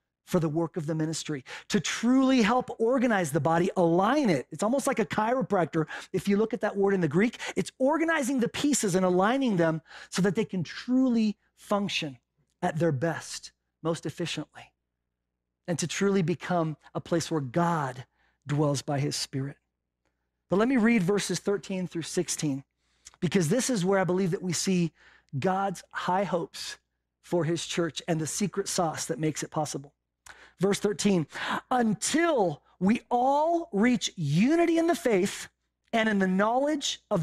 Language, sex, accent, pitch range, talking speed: English, male, American, 160-225 Hz, 170 wpm